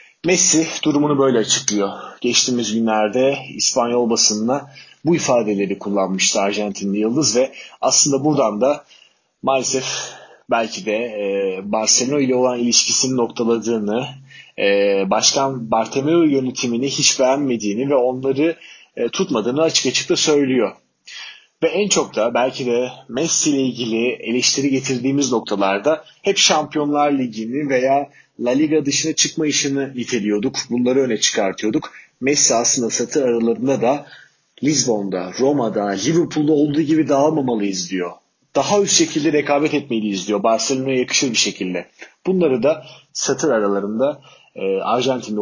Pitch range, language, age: 115-150 Hz, Turkish, 30-49